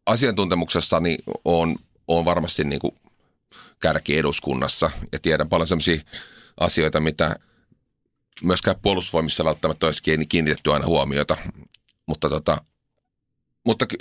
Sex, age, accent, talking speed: male, 30-49, native, 105 wpm